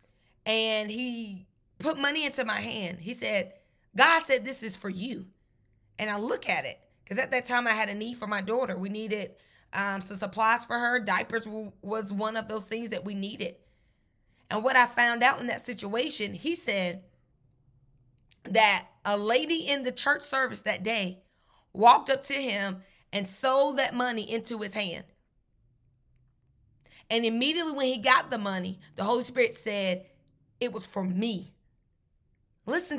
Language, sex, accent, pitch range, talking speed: English, female, American, 190-260 Hz, 170 wpm